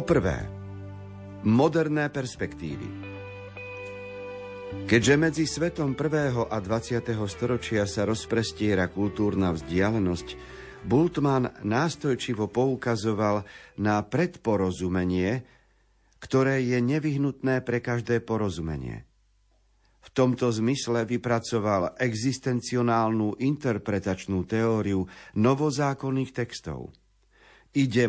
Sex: male